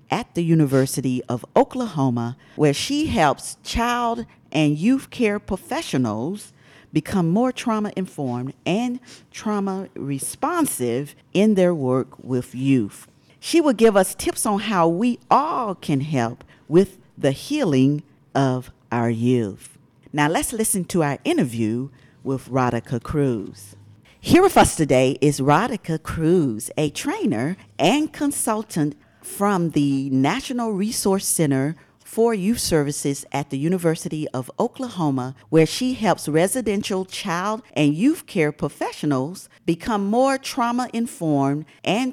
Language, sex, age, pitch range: English, female, 50-69, 135-220 Hz